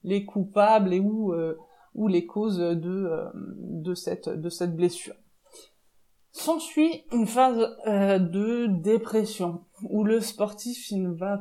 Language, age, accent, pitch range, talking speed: French, 20-39, French, 180-225 Hz, 135 wpm